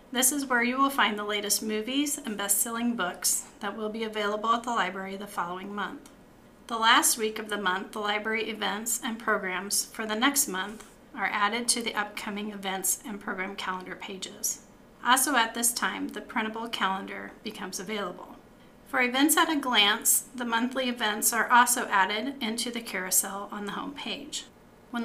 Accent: American